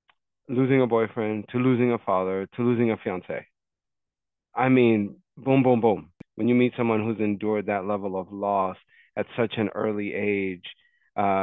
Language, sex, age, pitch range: English, male, 30-49, 100-125 Hz